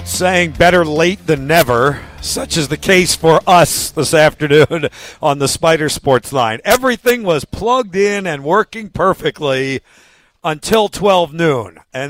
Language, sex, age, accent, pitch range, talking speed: English, male, 50-69, American, 135-175 Hz, 145 wpm